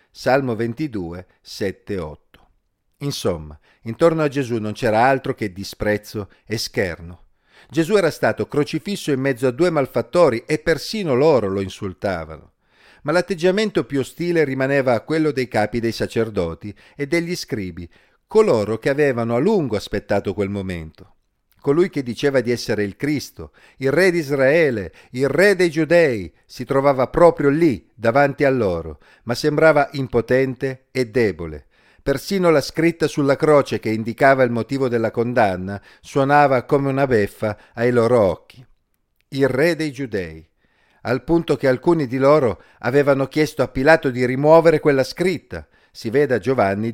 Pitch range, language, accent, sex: 105-145 Hz, Italian, native, male